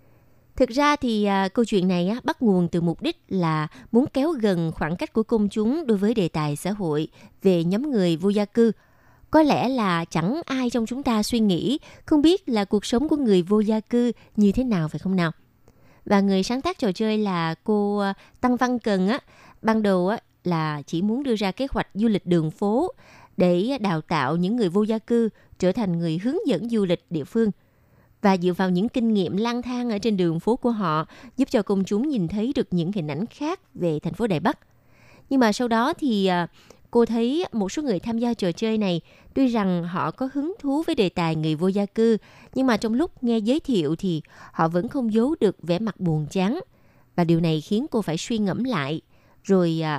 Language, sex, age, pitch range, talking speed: Vietnamese, female, 20-39, 175-240 Hz, 220 wpm